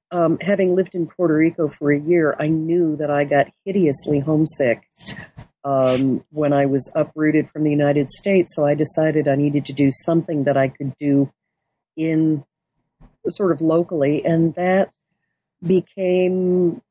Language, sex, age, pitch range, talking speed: English, female, 50-69, 150-180 Hz, 155 wpm